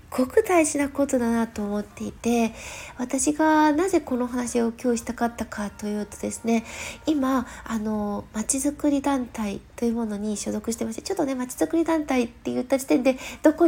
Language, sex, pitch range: Japanese, female, 220-295 Hz